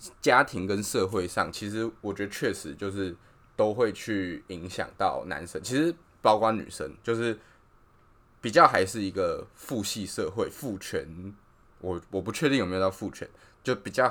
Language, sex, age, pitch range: Chinese, male, 20-39, 90-110 Hz